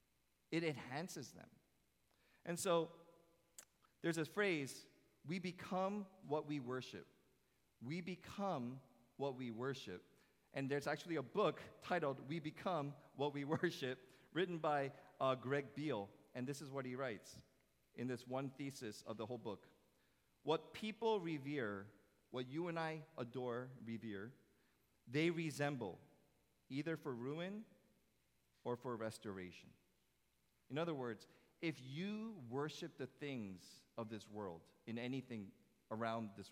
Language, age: English, 40-59